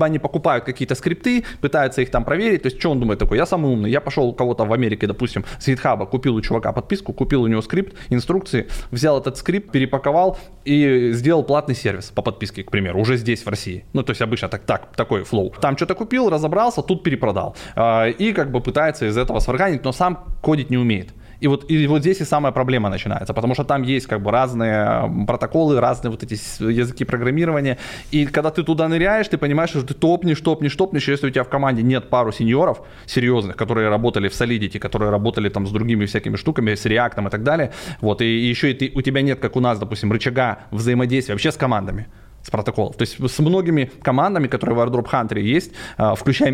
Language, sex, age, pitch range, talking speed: Russian, male, 20-39, 115-150 Hz, 215 wpm